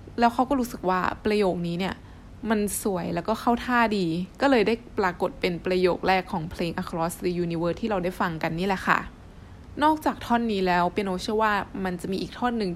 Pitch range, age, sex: 180-220 Hz, 20-39, female